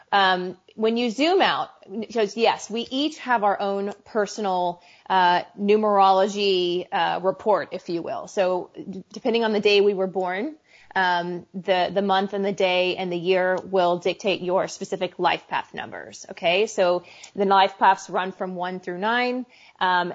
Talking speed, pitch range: 165 wpm, 185-220 Hz